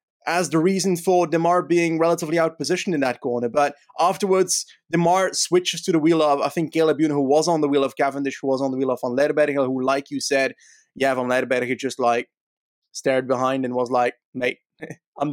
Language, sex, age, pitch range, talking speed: English, male, 20-39, 140-180 Hz, 210 wpm